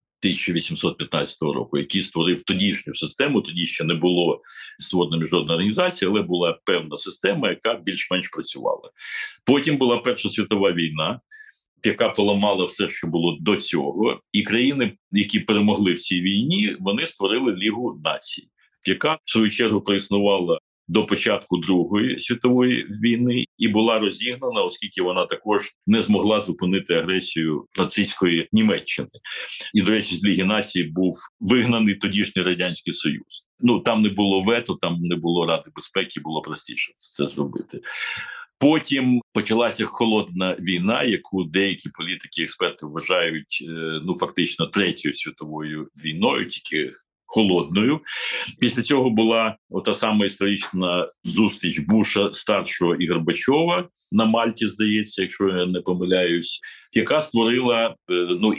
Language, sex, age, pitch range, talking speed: Ukrainian, male, 60-79, 90-125 Hz, 130 wpm